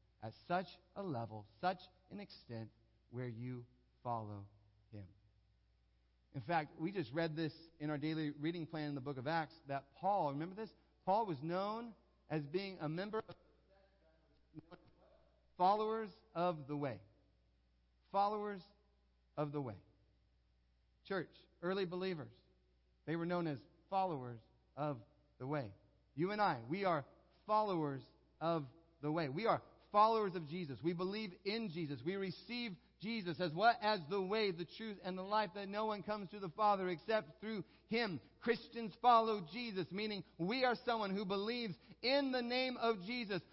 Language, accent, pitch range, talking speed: English, American, 145-220 Hz, 155 wpm